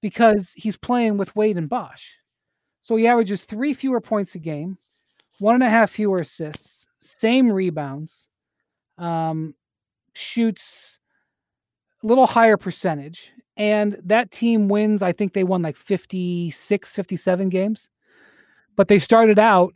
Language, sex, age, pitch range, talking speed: English, male, 30-49, 175-220 Hz, 135 wpm